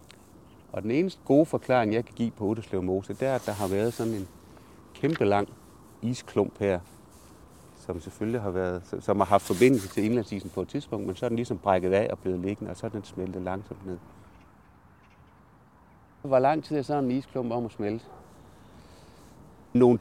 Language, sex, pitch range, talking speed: Danish, male, 90-115 Hz, 200 wpm